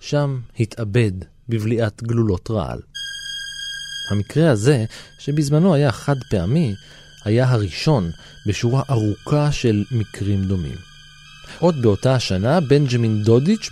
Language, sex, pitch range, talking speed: Hebrew, male, 105-145 Hz, 100 wpm